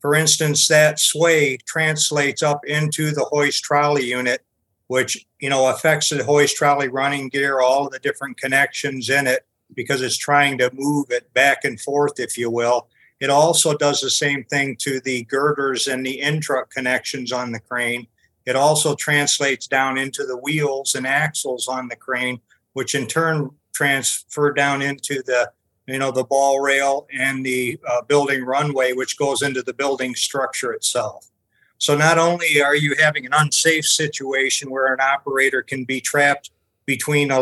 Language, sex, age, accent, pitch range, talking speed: English, male, 50-69, American, 130-145 Hz, 175 wpm